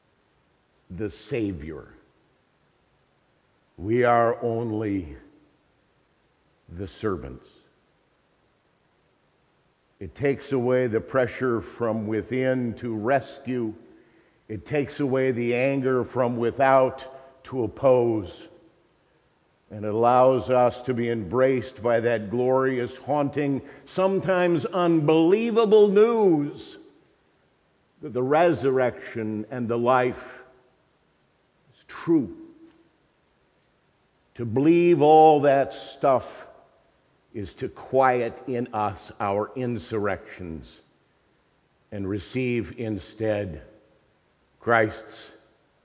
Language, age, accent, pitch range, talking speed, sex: English, 50-69, American, 110-135 Hz, 80 wpm, male